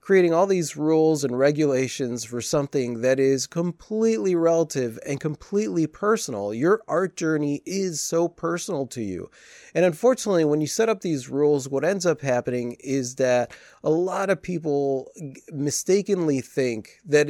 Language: English